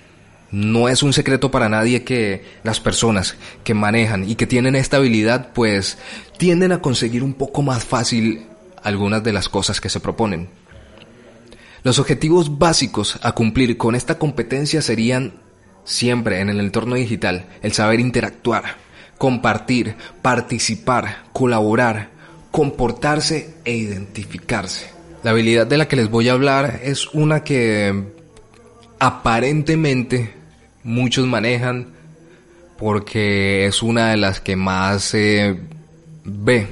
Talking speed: 125 wpm